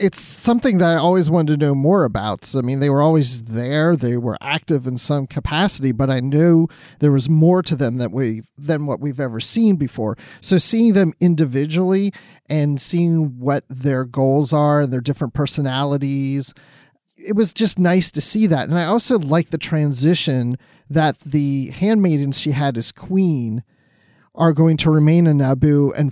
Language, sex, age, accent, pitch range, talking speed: English, male, 40-59, American, 135-170 Hz, 185 wpm